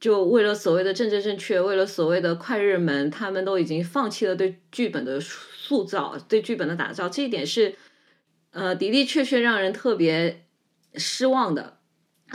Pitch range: 175-235 Hz